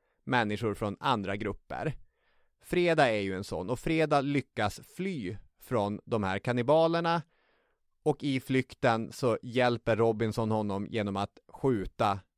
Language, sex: Swedish, male